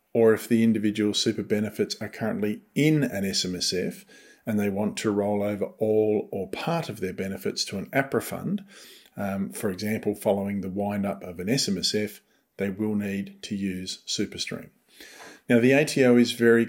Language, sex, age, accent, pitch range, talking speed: English, male, 40-59, Australian, 105-130 Hz, 170 wpm